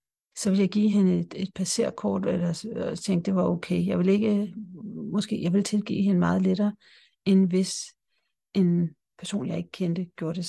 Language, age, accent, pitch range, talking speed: Danish, 60-79, native, 185-215 Hz, 175 wpm